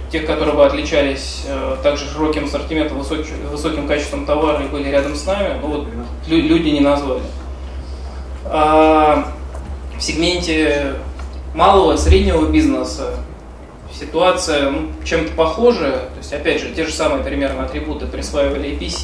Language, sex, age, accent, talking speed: Russian, male, 20-39, native, 140 wpm